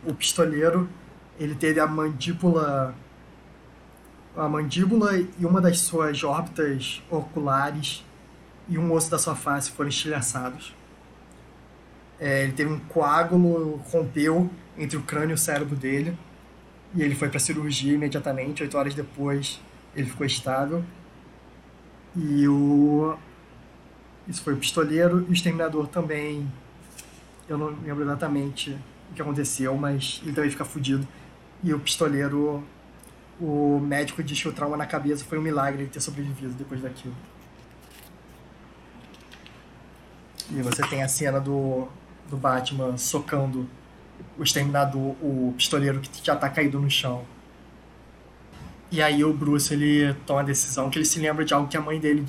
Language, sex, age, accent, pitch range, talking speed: Portuguese, male, 20-39, Brazilian, 135-155 Hz, 145 wpm